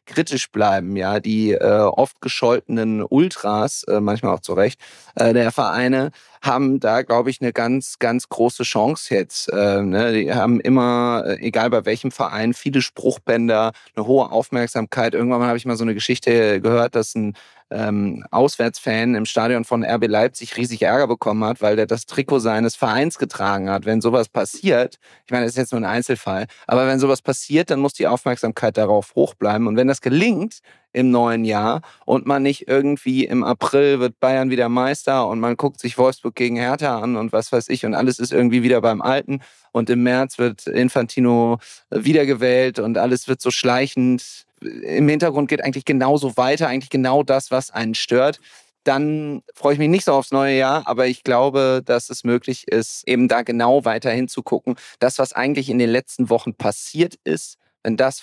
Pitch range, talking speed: 115-135 Hz, 190 wpm